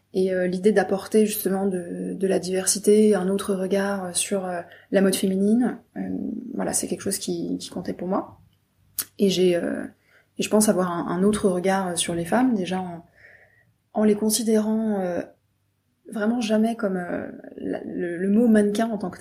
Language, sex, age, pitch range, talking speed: French, female, 20-39, 180-210 Hz, 170 wpm